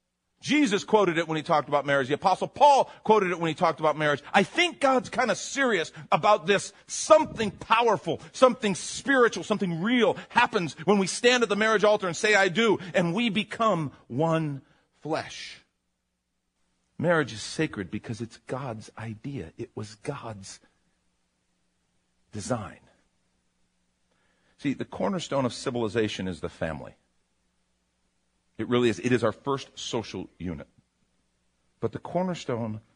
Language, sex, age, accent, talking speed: English, male, 50-69, American, 145 wpm